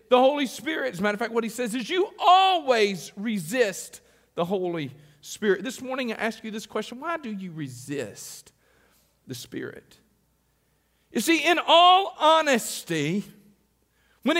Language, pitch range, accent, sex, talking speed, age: English, 180-265 Hz, American, male, 155 wpm, 50-69